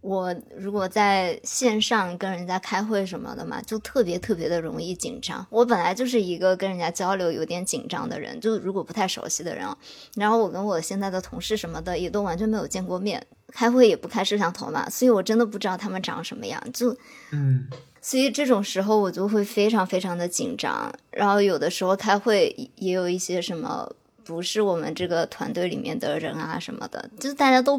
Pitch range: 185-230 Hz